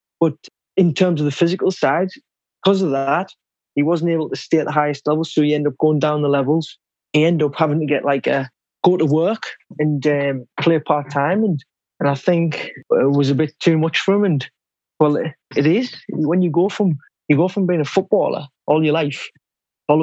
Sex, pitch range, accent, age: male, 145-175 Hz, British, 20-39